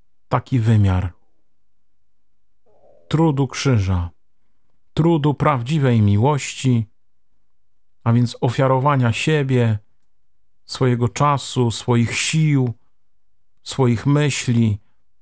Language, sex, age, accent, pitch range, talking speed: Polish, male, 50-69, native, 110-145 Hz, 65 wpm